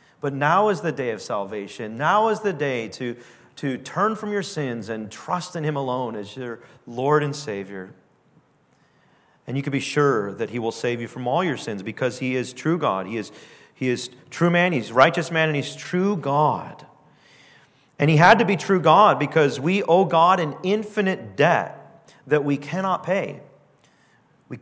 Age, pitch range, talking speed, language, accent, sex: 40-59, 130-190 Hz, 190 wpm, English, American, male